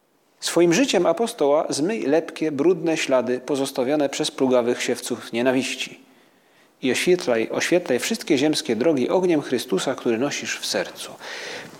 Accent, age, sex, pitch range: native, 30-49, male, 130-185 Hz